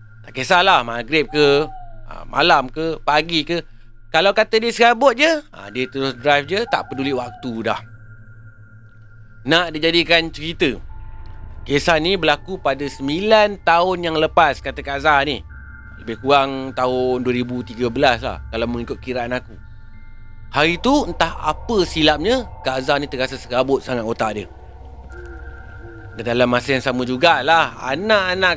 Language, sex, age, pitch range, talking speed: Malay, male, 30-49, 115-165 Hz, 135 wpm